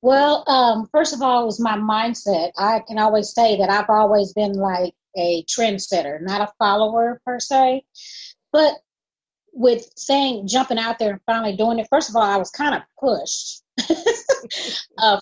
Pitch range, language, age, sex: 195-235 Hz, English, 30-49, female